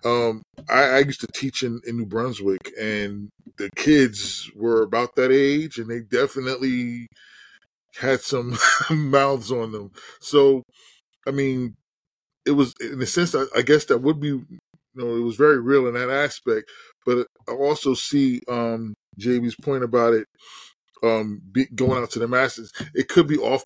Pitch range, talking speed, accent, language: 115-140 Hz, 170 wpm, American, English